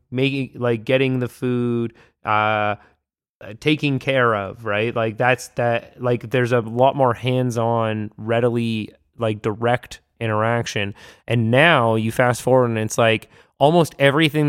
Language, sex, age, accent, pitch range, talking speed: English, male, 20-39, American, 105-125 Hz, 140 wpm